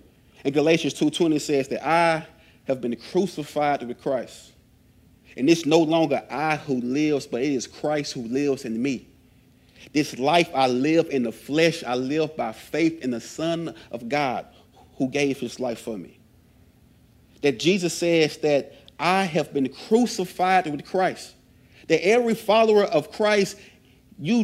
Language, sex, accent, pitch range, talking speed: English, male, American, 125-165 Hz, 155 wpm